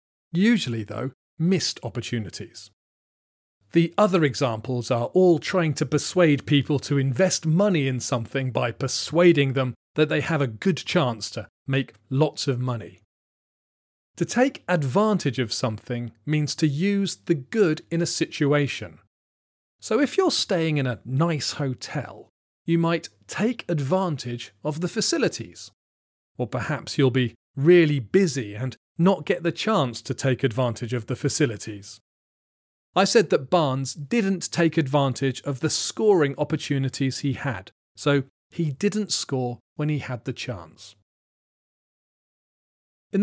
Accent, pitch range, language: British, 120-170 Hz, English